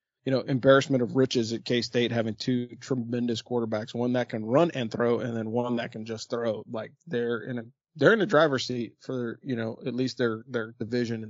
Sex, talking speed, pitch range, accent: male, 225 wpm, 115-135 Hz, American